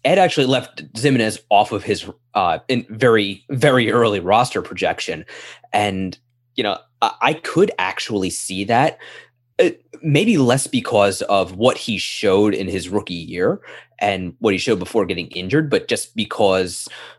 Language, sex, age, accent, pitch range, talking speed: English, male, 20-39, American, 100-130 Hz, 155 wpm